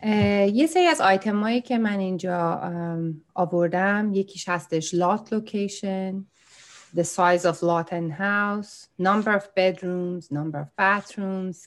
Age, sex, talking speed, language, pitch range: 30-49, female, 110 wpm, Persian, 165-200 Hz